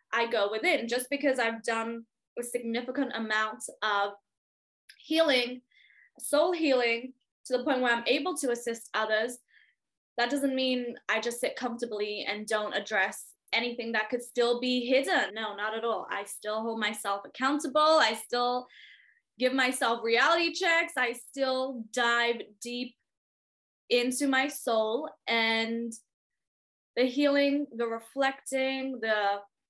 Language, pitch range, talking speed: English, 220-270 Hz, 135 wpm